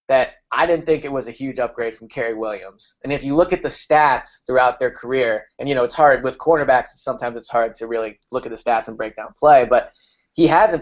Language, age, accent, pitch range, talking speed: English, 20-39, American, 120-160 Hz, 250 wpm